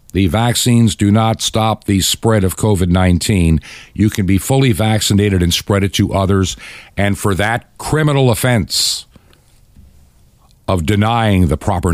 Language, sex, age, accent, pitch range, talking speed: English, male, 60-79, American, 90-115 Hz, 140 wpm